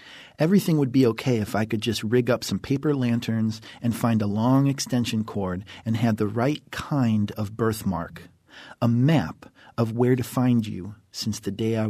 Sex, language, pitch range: male, English, 110-130 Hz